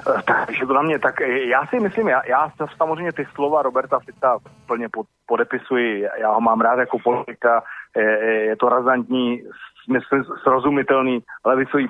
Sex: male